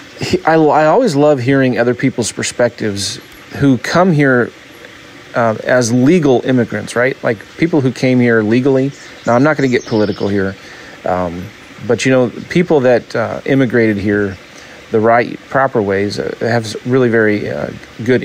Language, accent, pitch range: English, American, 105-135 Hz